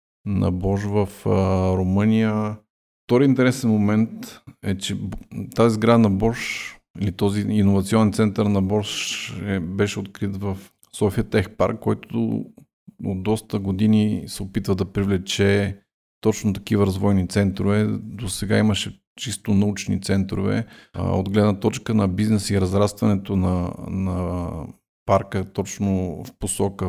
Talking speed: 125 wpm